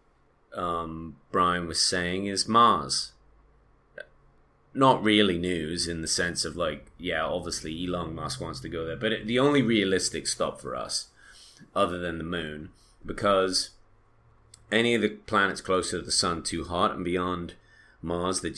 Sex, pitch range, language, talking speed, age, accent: male, 85-105 Hz, English, 160 wpm, 30-49, British